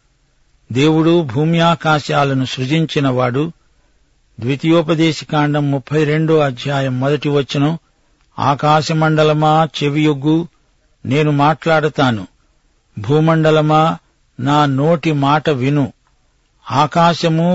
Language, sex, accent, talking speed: Telugu, male, native, 70 wpm